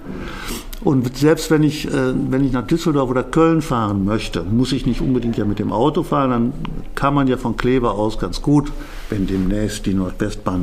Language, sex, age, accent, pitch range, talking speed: German, male, 60-79, German, 110-135 Hz, 190 wpm